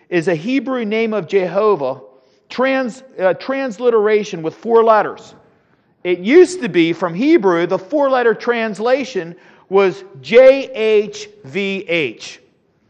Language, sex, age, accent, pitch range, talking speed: English, male, 40-59, American, 145-215 Hz, 105 wpm